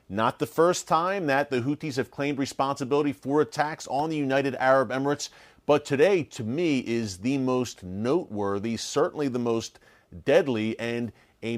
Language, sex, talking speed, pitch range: English, male, 160 wpm, 115-145 Hz